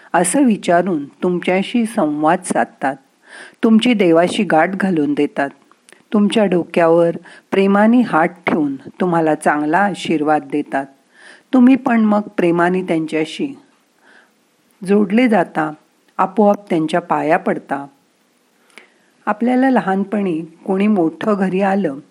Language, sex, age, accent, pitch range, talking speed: Marathi, female, 50-69, native, 165-225 Hz, 100 wpm